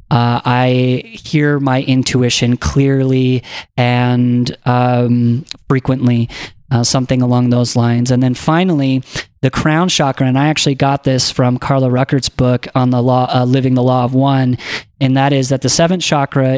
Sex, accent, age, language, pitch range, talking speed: male, American, 30-49, English, 130-145 Hz, 165 wpm